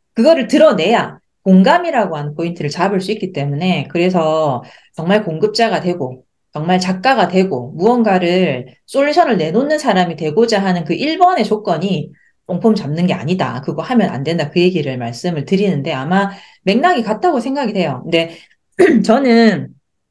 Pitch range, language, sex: 160-225 Hz, Korean, female